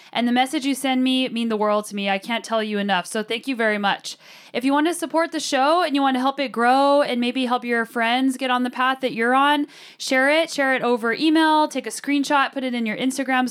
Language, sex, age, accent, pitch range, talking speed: English, female, 10-29, American, 230-280 Hz, 260 wpm